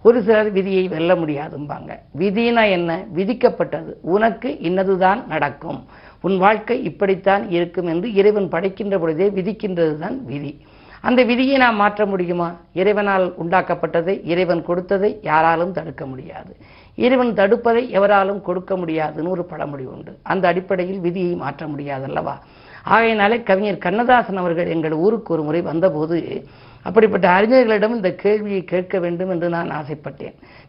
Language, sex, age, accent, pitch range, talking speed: Tamil, female, 50-69, native, 170-210 Hz, 125 wpm